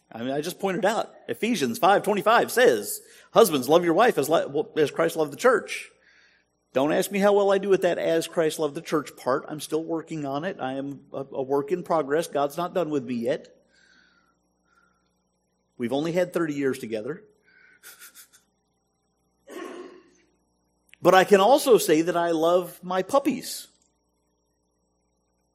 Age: 50-69